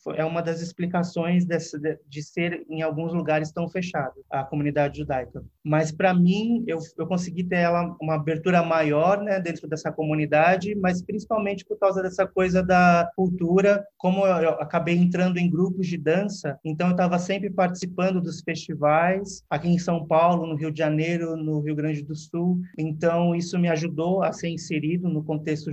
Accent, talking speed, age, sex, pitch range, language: Brazilian, 175 wpm, 30-49, male, 155-185 Hz, Portuguese